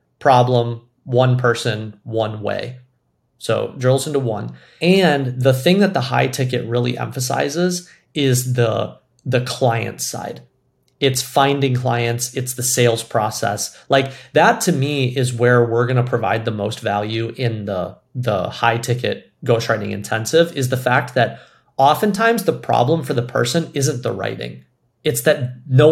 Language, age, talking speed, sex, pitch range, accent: English, 30-49, 155 wpm, male, 120-140 Hz, American